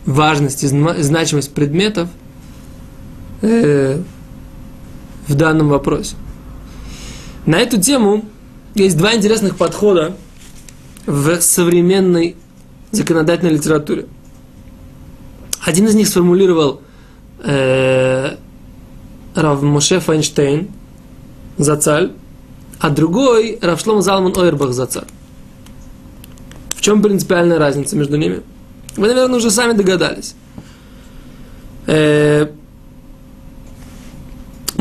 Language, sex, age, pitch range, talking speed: Russian, male, 20-39, 150-205 Hz, 80 wpm